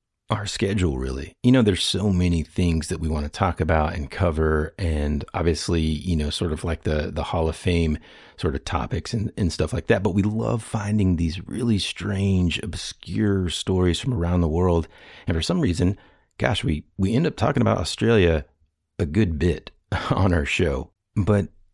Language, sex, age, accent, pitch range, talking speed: English, male, 40-59, American, 80-105 Hz, 190 wpm